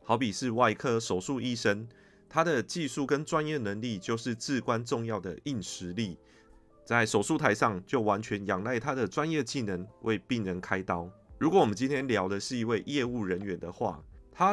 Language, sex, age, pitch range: Chinese, male, 30-49, 95-125 Hz